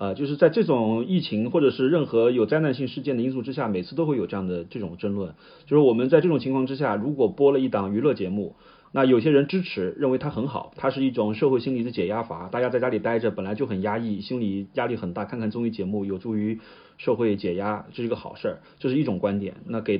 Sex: male